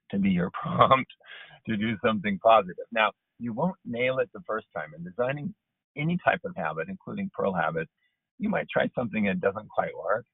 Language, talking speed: English, 190 wpm